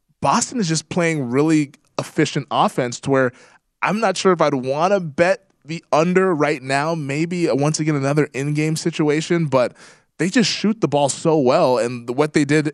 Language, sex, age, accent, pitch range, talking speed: English, male, 20-39, American, 130-170 Hz, 185 wpm